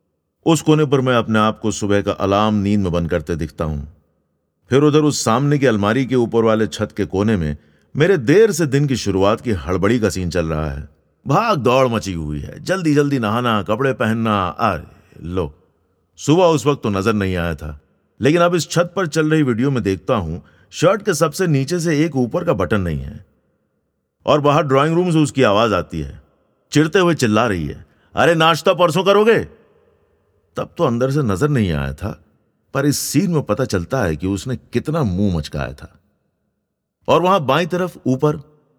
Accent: native